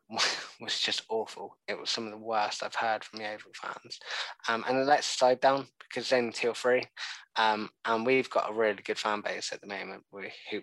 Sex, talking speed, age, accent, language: male, 220 wpm, 20-39, British, English